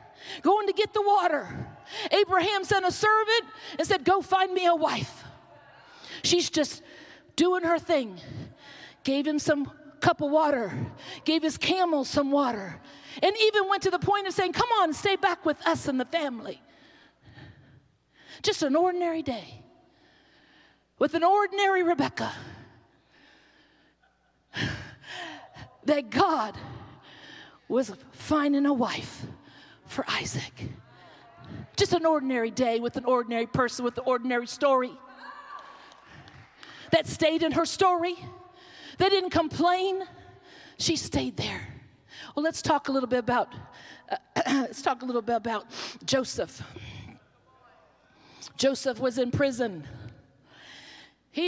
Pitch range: 250-350 Hz